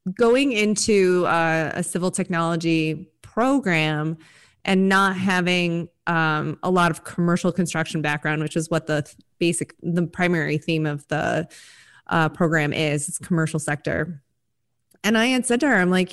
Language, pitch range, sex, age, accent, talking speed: English, 160-200 Hz, female, 20-39, American, 155 wpm